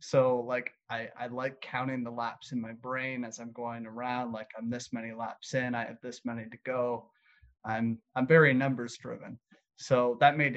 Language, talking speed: English, 200 wpm